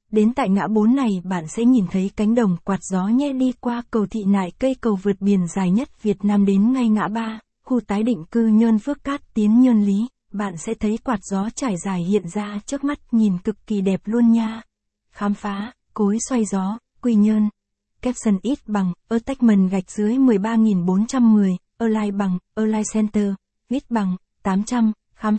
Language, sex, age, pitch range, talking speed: Vietnamese, female, 20-39, 200-235 Hz, 195 wpm